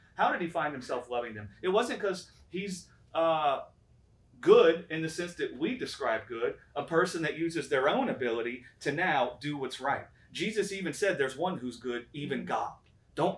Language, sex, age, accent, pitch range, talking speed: English, male, 30-49, American, 135-195 Hz, 190 wpm